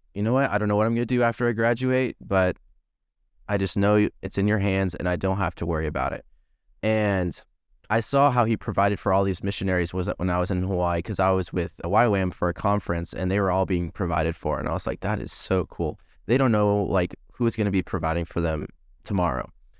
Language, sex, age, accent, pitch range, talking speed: English, male, 20-39, American, 90-110 Hz, 250 wpm